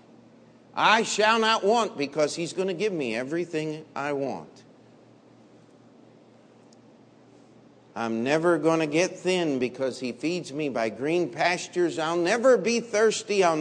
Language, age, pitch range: English, 50-69, 145-190 Hz